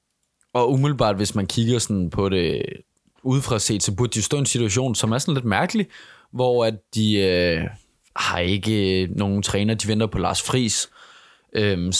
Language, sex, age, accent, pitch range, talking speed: Danish, male, 20-39, native, 100-125 Hz, 180 wpm